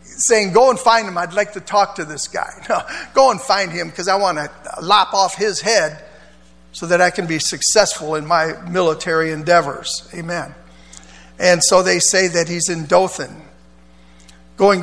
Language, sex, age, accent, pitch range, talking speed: English, male, 50-69, American, 165-230 Hz, 180 wpm